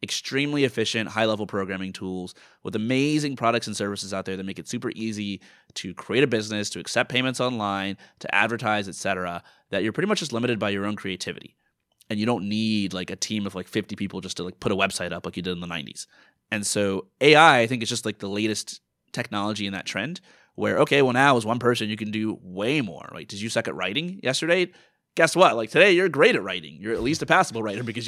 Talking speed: 235 wpm